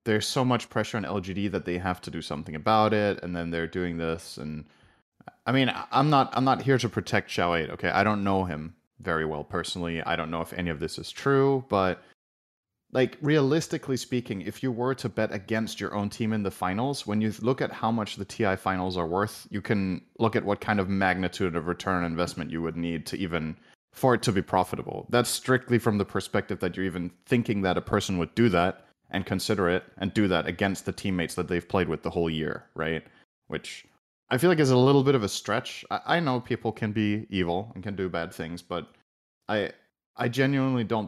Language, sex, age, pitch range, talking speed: English, male, 30-49, 90-120 Hz, 230 wpm